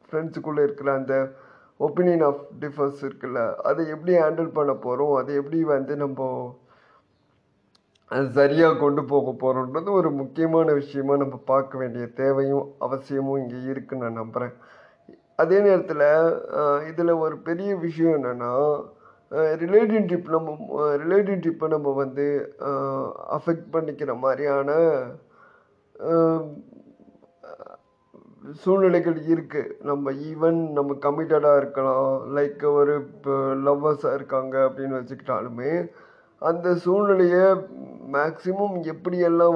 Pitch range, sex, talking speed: 135-165 Hz, male, 95 wpm